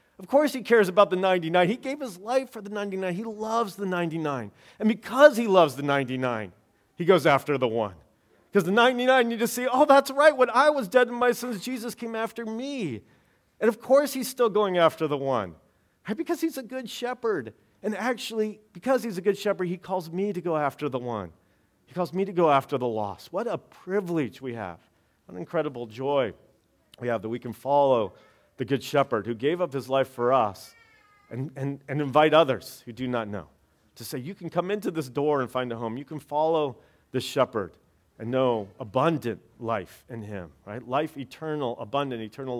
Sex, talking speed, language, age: male, 210 wpm, English, 40-59